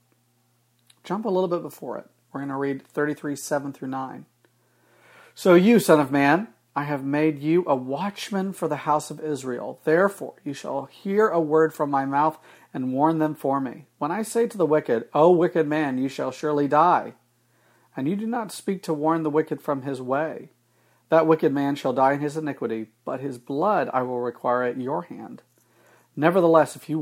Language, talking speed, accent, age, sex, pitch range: English, 200 wpm, American, 40-59, male, 120-155 Hz